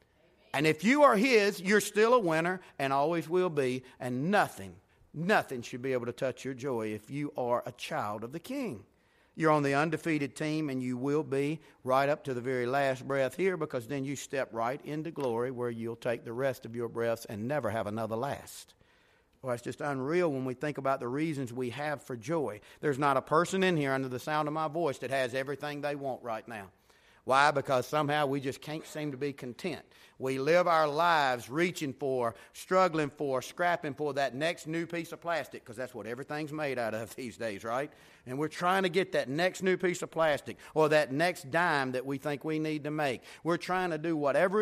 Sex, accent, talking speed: male, American, 220 wpm